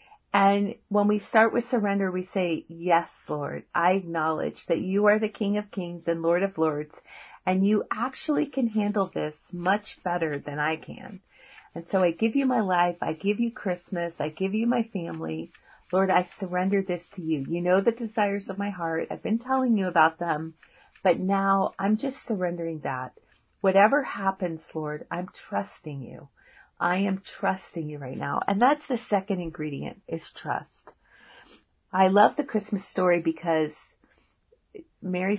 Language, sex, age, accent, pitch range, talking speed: English, female, 40-59, American, 170-215 Hz, 170 wpm